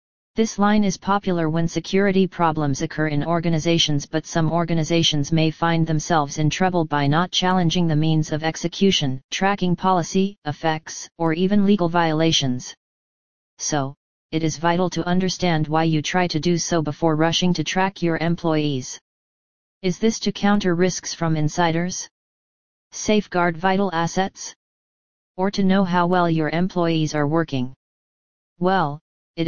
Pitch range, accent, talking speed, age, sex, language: 155-180 Hz, American, 145 wpm, 40-59, female, English